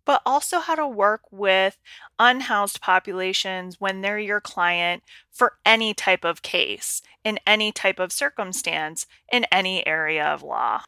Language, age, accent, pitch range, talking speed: English, 30-49, American, 185-235 Hz, 150 wpm